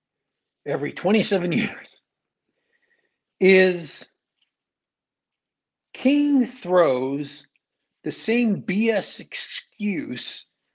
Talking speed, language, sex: 55 wpm, English, male